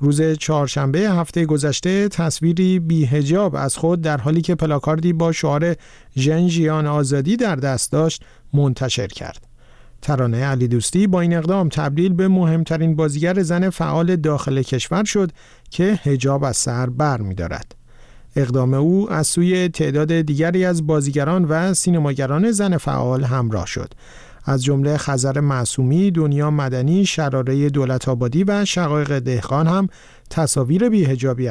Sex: male